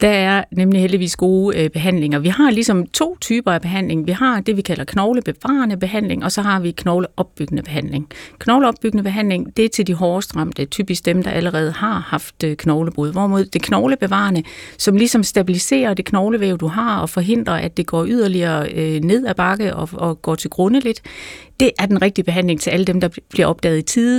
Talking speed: 195 wpm